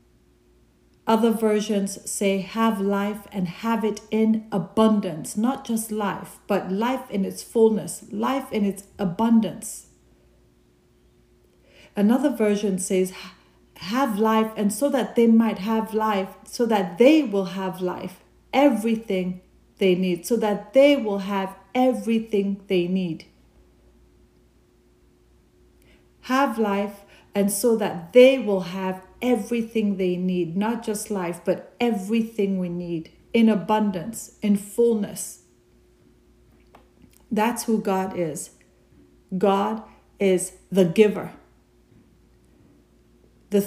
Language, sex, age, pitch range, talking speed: English, female, 40-59, 185-225 Hz, 115 wpm